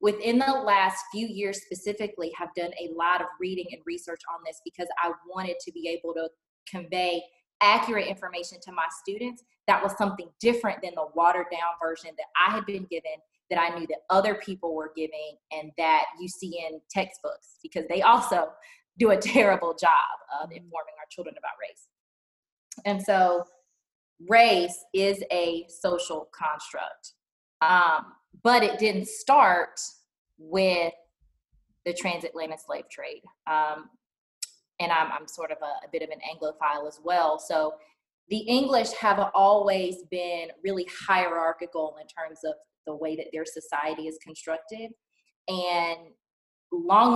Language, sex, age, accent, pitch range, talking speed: English, female, 20-39, American, 160-205 Hz, 150 wpm